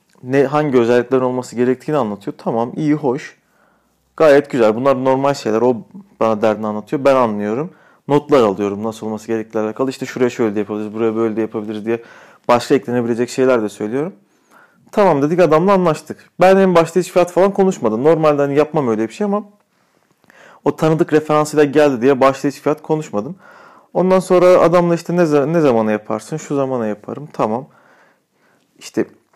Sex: male